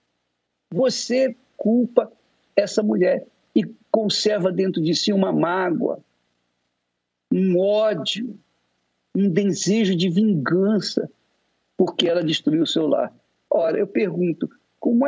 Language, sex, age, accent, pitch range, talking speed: Portuguese, male, 60-79, Brazilian, 175-260 Hz, 105 wpm